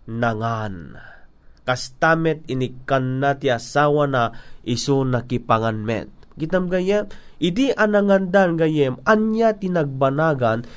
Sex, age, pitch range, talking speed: male, 30-49, 125-165 Hz, 95 wpm